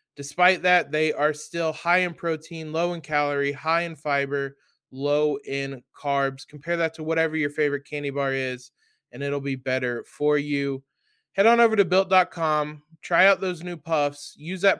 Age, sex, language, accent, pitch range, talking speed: 20-39, male, English, American, 140-175 Hz, 180 wpm